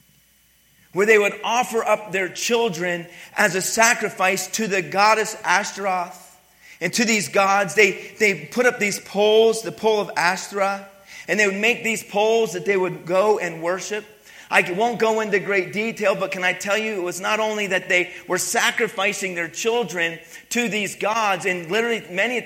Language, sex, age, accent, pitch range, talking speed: English, male, 40-59, American, 185-220 Hz, 180 wpm